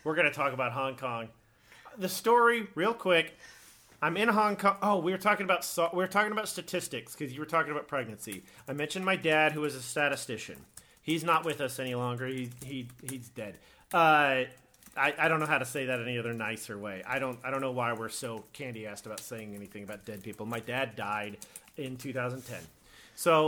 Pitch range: 125-165 Hz